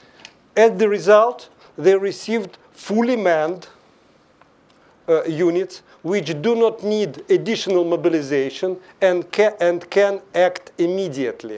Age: 50-69